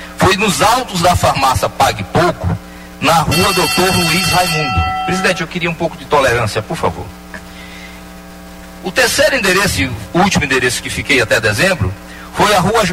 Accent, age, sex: Brazilian, 40-59, male